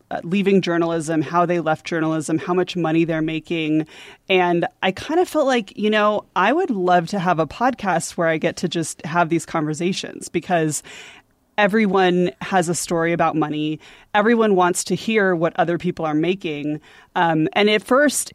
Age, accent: 20-39, American